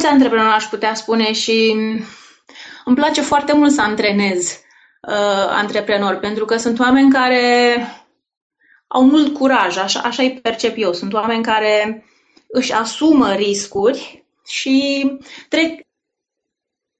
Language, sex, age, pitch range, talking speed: Romanian, female, 20-39, 215-270 Hz, 115 wpm